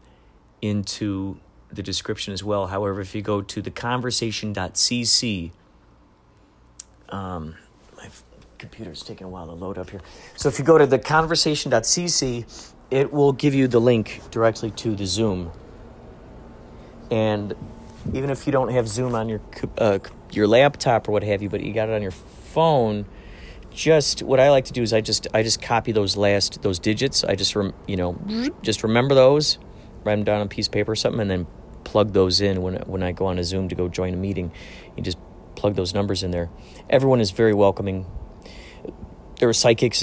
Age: 40-59